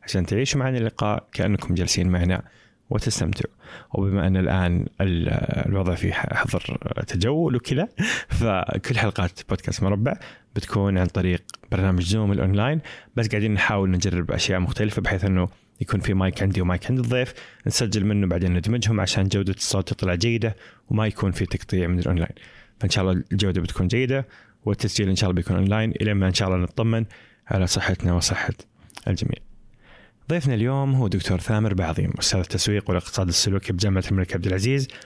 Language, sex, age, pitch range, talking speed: Arabic, male, 20-39, 95-125 Hz, 155 wpm